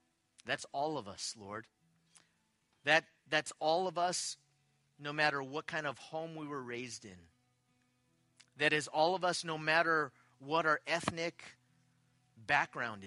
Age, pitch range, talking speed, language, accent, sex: 30-49, 115-150 Hz, 140 wpm, English, American, male